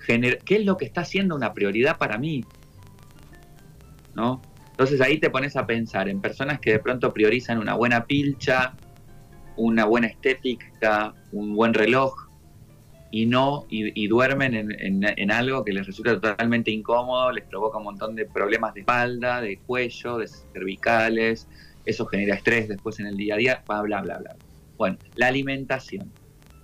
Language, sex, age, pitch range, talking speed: Spanish, male, 20-39, 100-130 Hz, 165 wpm